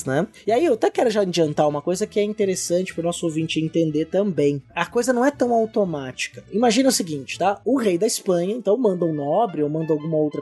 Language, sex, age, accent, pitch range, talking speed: Portuguese, male, 20-39, Brazilian, 160-235 Hz, 230 wpm